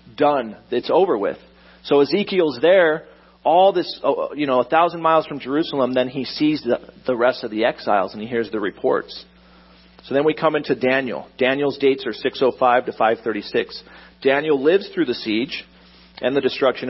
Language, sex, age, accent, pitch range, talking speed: English, male, 40-59, American, 105-140 Hz, 180 wpm